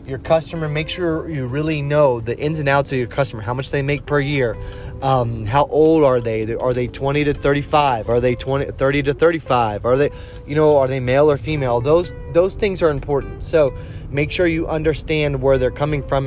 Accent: American